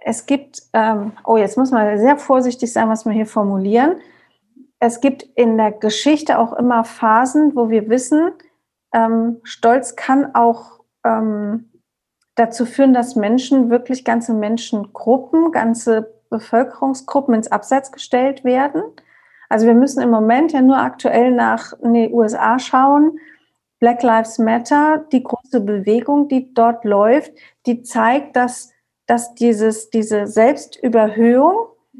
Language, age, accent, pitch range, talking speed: German, 40-59, German, 225-265 Hz, 130 wpm